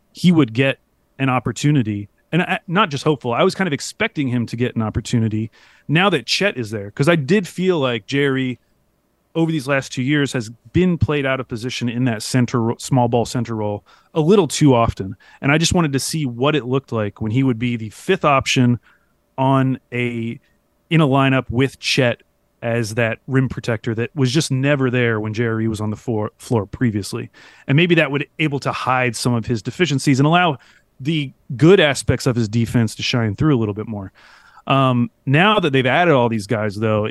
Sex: male